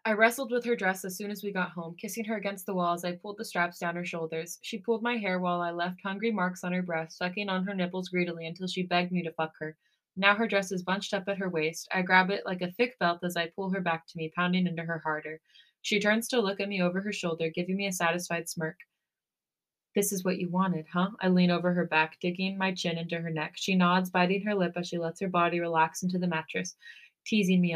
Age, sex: 20-39, female